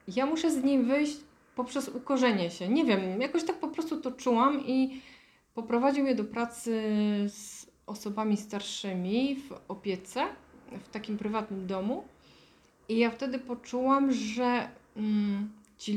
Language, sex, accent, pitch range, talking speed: Polish, female, native, 210-250 Hz, 135 wpm